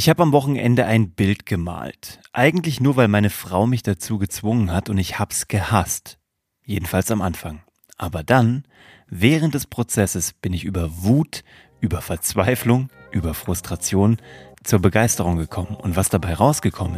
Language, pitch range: German, 90-120 Hz